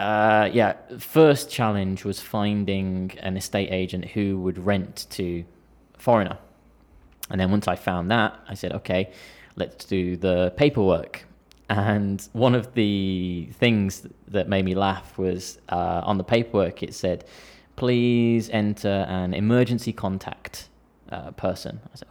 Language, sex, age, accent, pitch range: Japanese, male, 20-39, British, 95-115 Hz